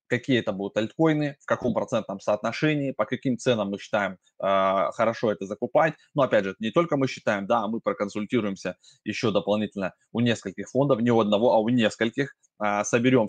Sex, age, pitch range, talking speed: male, 20-39, 105-130 Hz, 180 wpm